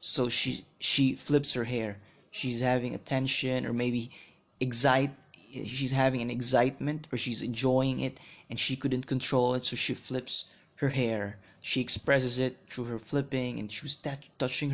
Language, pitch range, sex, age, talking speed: English, 115-135 Hz, male, 20-39, 165 wpm